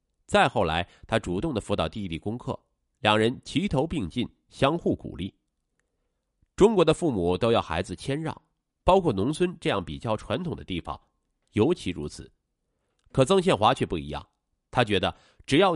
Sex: male